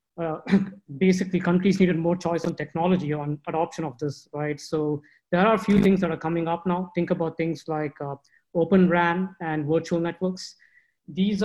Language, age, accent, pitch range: Chinese, 20-39, Indian, 150-175 Hz